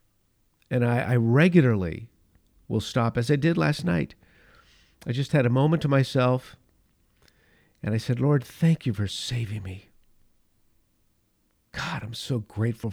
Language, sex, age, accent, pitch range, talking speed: English, male, 50-69, American, 100-135 Hz, 145 wpm